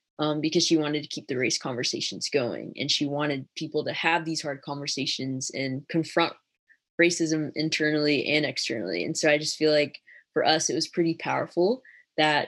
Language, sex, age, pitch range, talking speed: English, female, 20-39, 140-170 Hz, 185 wpm